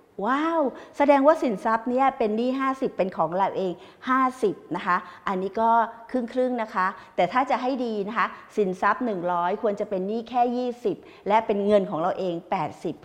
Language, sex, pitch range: English, female, 180-235 Hz